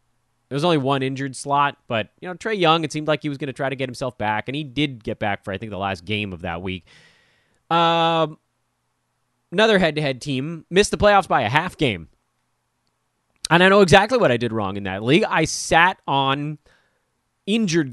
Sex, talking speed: male, 210 wpm